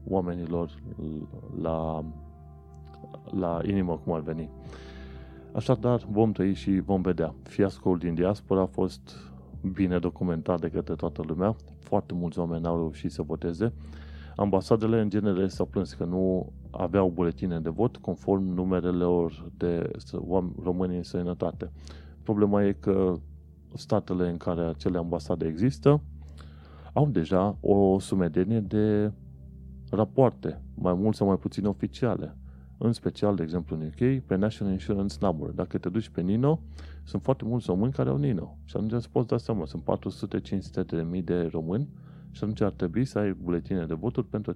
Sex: male